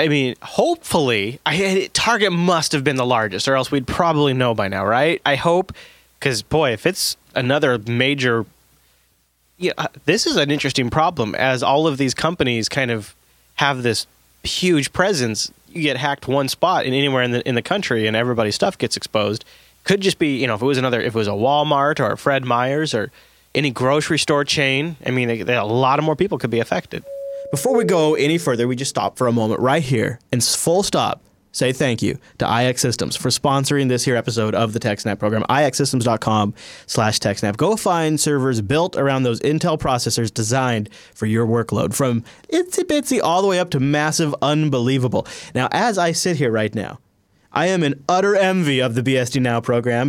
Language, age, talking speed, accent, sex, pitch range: English, 20-39, 200 wpm, American, male, 115-155 Hz